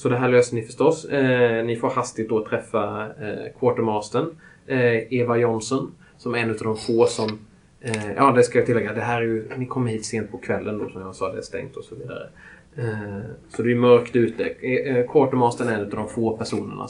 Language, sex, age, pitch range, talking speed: Swedish, male, 20-39, 110-125 Hz, 225 wpm